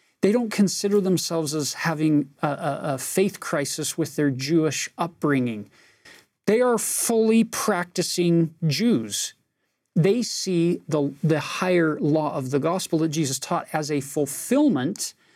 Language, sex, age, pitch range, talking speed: English, male, 40-59, 145-185 Hz, 135 wpm